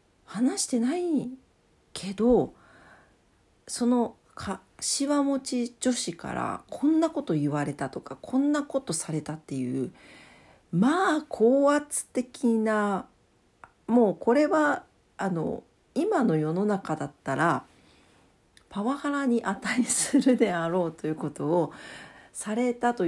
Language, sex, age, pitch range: Japanese, female, 40-59, 165-255 Hz